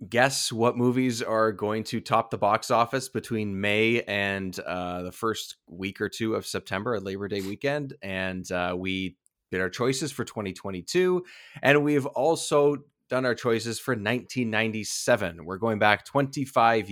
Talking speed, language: 165 wpm, English